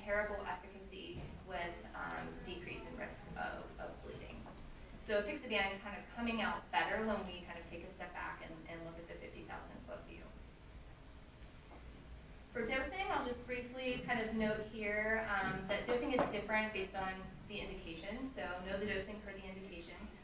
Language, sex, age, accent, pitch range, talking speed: English, female, 20-39, American, 185-220 Hz, 170 wpm